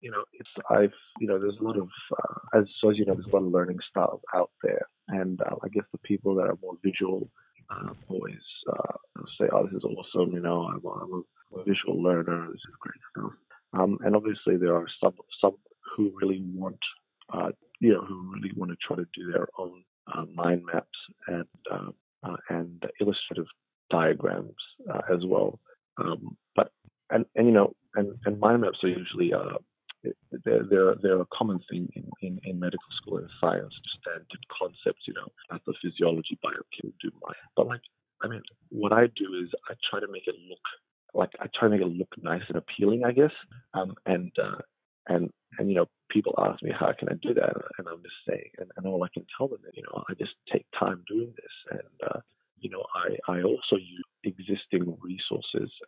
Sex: male